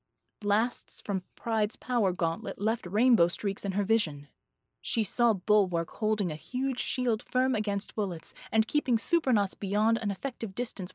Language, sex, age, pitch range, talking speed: English, female, 30-49, 190-255 Hz, 155 wpm